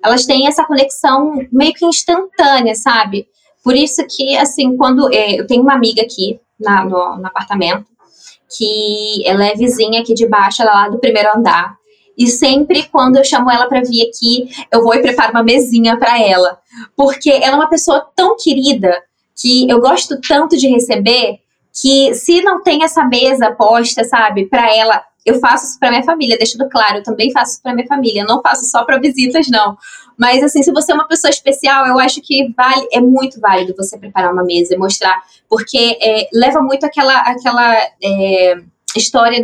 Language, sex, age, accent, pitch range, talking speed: Portuguese, female, 10-29, Brazilian, 210-265 Hz, 190 wpm